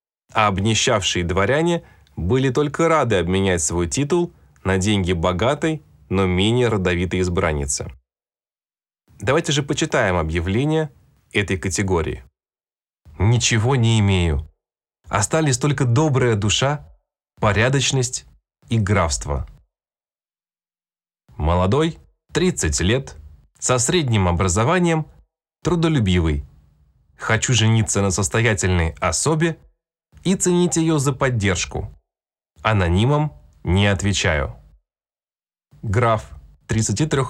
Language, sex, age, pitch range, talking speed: Russian, male, 20-39, 90-145 Hz, 85 wpm